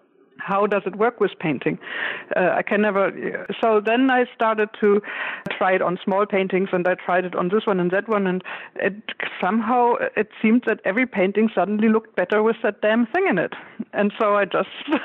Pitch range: 185-225 Hz